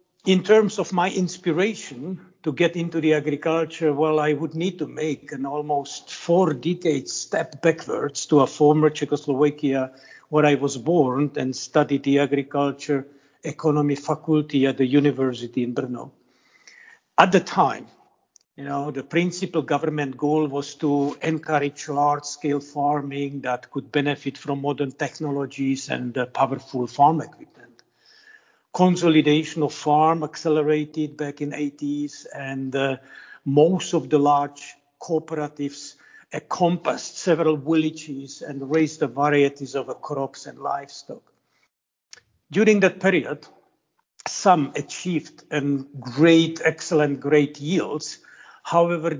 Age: 50-69